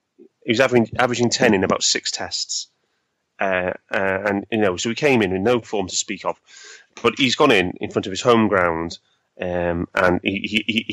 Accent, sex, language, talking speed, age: British, male, English, 205 wpm, 30-49